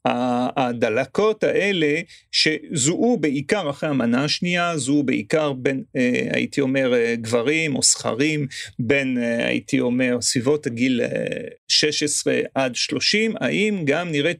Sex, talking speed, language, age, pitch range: male, 110 wpm, Hebrew, 40-59, 140-210 Hz